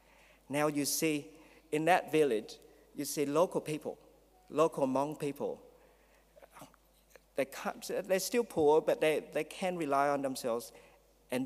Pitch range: 125-155 Hz